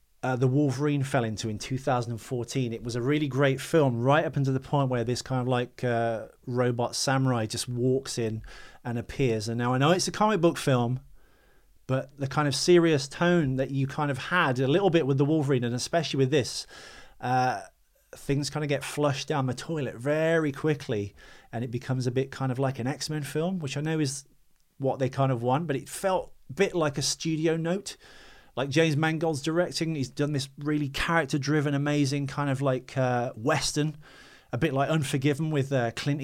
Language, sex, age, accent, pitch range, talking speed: English, male, 30-49, British, 130-150 Hz, 205 wpm